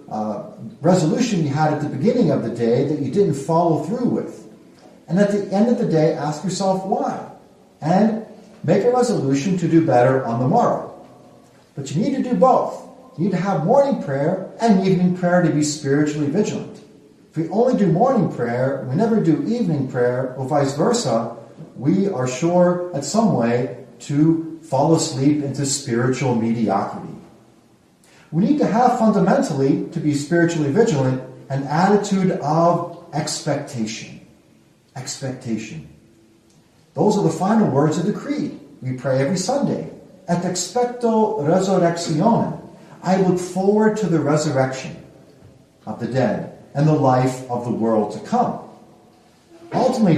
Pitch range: 140-205 Hz